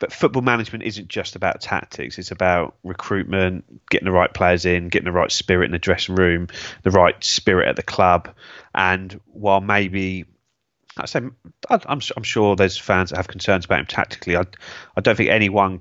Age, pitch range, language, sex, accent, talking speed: 30-49, 90-100 Hz, English, male, British, 190 wpm